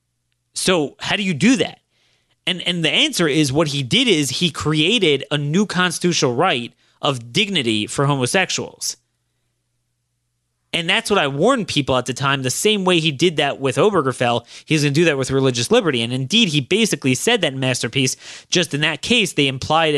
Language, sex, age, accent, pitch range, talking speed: English, male, 30-49, American, 120-160 Hz, 190 wpm